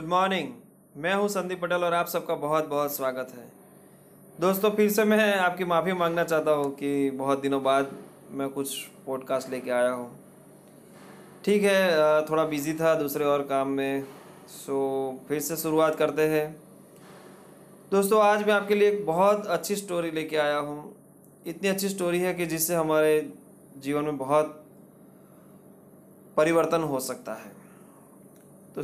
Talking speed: 155 wpm